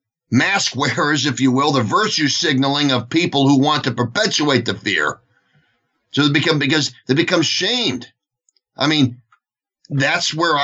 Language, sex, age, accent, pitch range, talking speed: English, male, 50-69, American, 120-155 Hz, 150 wpm